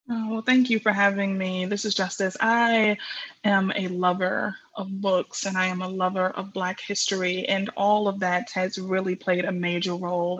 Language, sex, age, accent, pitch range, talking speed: English, female, 20-39, American, 185-210 Hz, 195 wpm